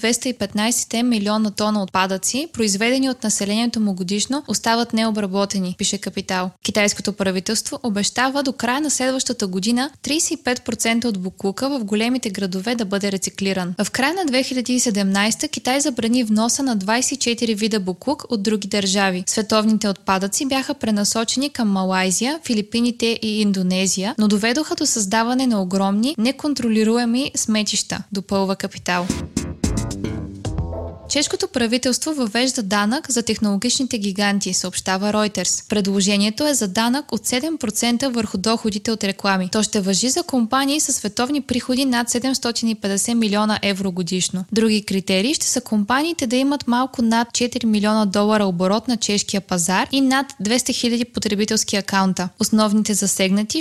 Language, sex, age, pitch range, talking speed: Bulgarian, female, 20-39, 200-250 Hz, 135 wpm